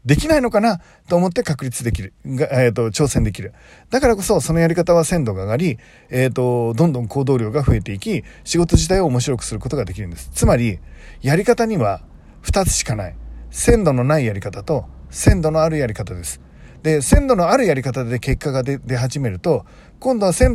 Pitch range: 115-180 Hz